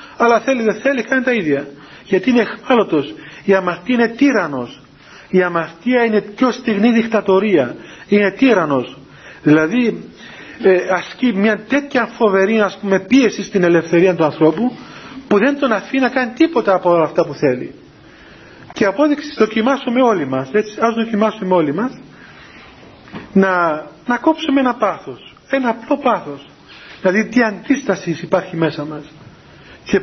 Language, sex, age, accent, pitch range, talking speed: Greek, male, 40-59, native, 175-235 Hz, 140 wpm